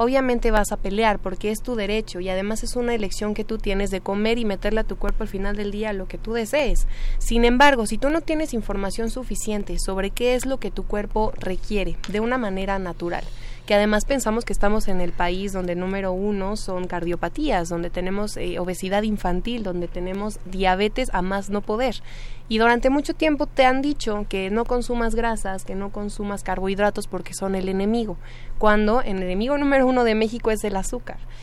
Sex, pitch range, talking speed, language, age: female, 190-230 Hz, 200 wpm, Spanish, 20-39